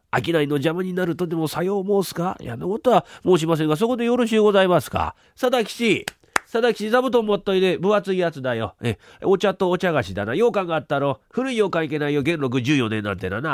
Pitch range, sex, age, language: 115-175 Hz, male, 40-59, Japanese